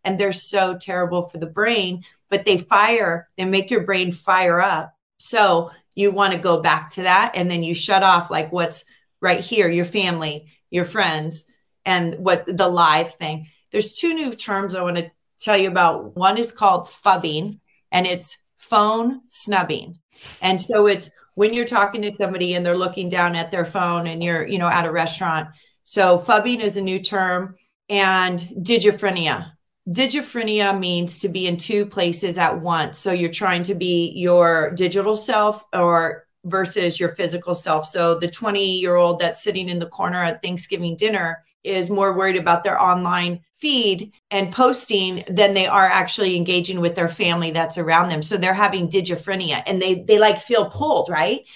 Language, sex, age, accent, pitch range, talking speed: English, female, 30-49, American, 175-205 Hz, 180 wpm